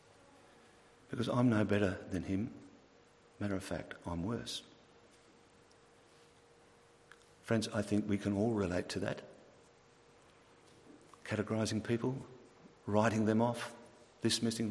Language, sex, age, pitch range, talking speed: English, male, 50-69, 100-125 Hz, 105 wpm